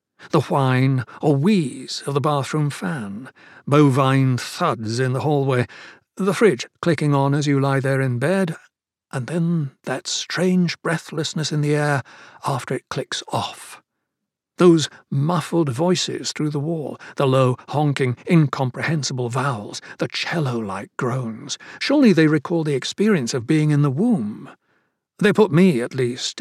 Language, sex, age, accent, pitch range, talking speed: English, male, 60-79, British, 130-165 Hz, 145 wpm